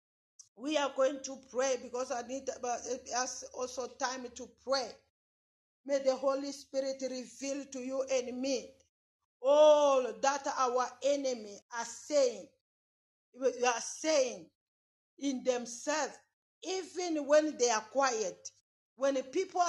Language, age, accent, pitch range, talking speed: English, 50-69, Nigerian, 240-285 Hz, 115 wpm